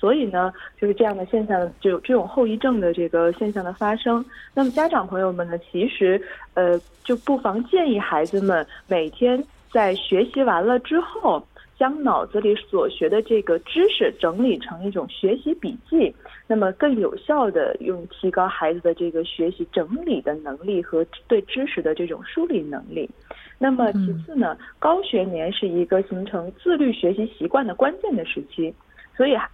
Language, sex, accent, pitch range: Korean, female, Chinese, 185-285 Hz